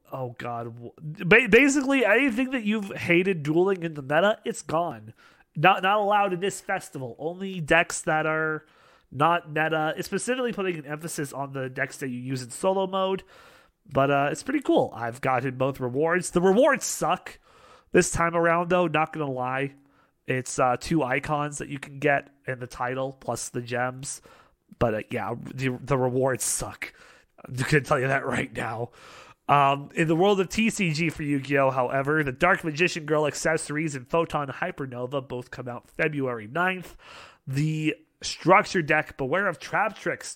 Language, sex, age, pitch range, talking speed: English, male, 30-49, 135-175 Hz, 175 wpm